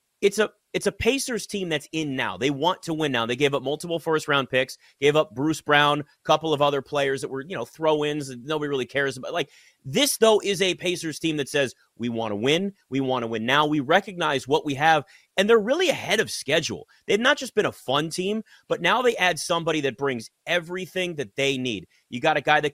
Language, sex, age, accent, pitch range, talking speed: English, male, 30-49, American, 135-170 Hz, 245 wpm